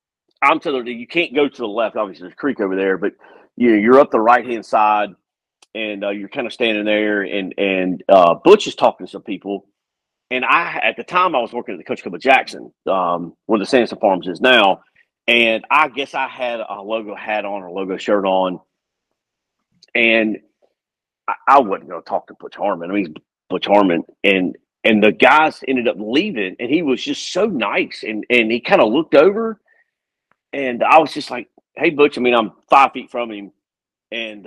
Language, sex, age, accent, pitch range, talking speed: English, male, 40-59, American, 105-165 Hz, 210 wpm